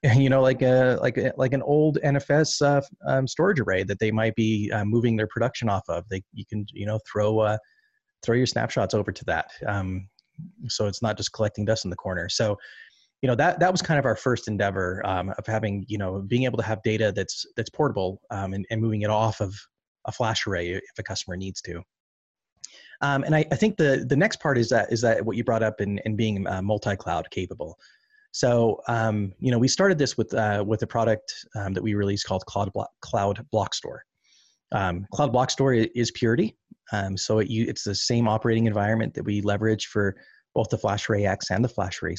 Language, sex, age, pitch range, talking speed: English, male, 30-49, 100-125 Hz, 225 wpm